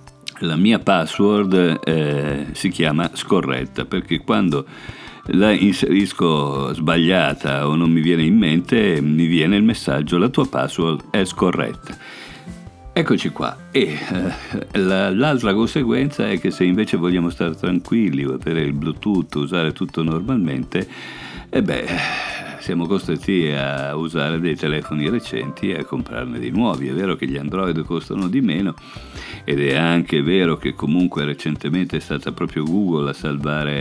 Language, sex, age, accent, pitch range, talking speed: Italian, male, 50-69, native, 70-85 Hz, 145 wpm